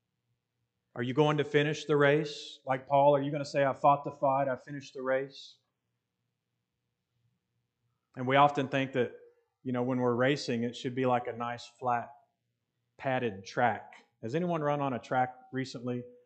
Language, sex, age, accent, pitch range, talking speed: English, male, 30-49, American, 120-150 Hz, 175 wpm